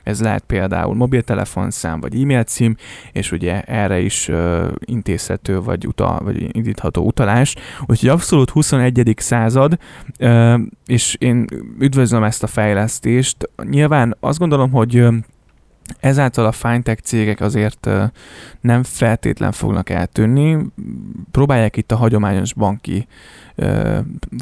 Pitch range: 105-125 Hz